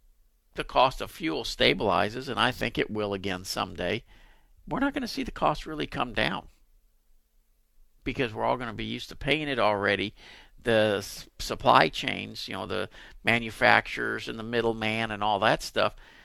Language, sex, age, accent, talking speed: English, male, 50-69, American, 175 wpm